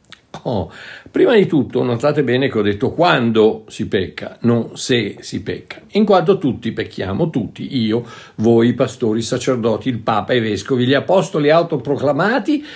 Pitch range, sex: 115-175 Hz, male